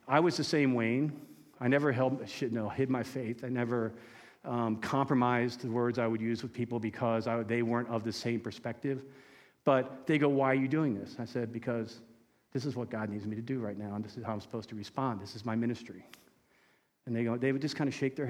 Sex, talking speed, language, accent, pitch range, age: male, 250 wpm, English, American, 115-135 Hz, 40-59